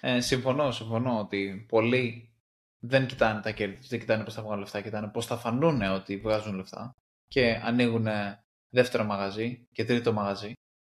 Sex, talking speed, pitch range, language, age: male, 160 wpm, 105-130 Hz, Greek, 20-39